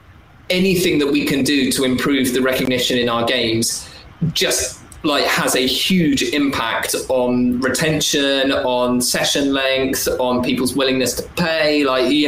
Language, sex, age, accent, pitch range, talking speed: English, male, 20-39, British, 125-170 Hz, 145 wpm